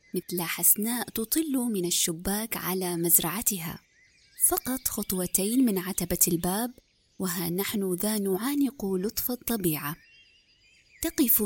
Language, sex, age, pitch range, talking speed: Arabic, female, 20-39, 180-225 Hz, 100 wpm